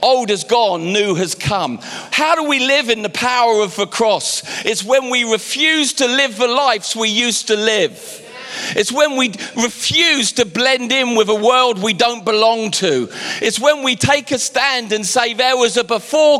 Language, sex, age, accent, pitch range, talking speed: English, male, 40-59, British, 160-250 Hz, 200 wpm